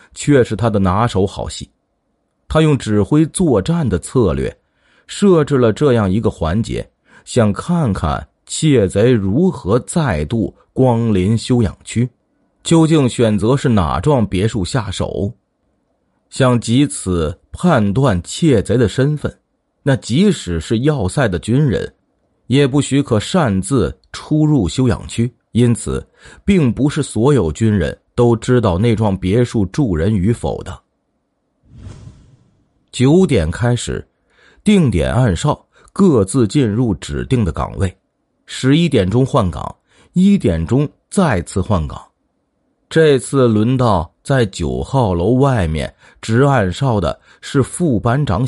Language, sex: Chinese, male